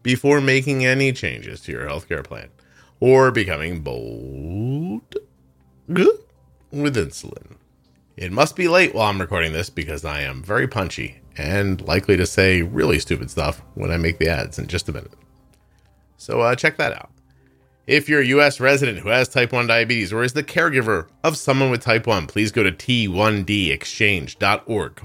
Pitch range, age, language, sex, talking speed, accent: 95-140 Hz, 30-49, English, male, 170 wpm, American